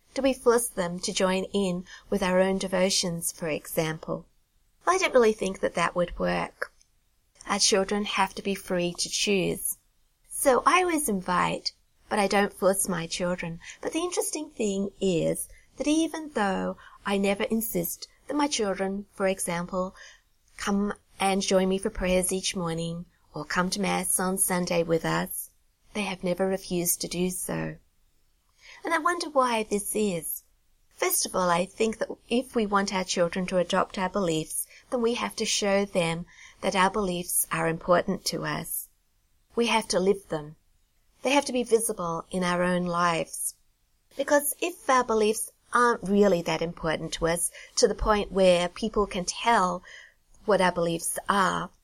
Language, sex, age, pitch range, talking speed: English, female, 30-49, 175-225 Hz, 170 wpm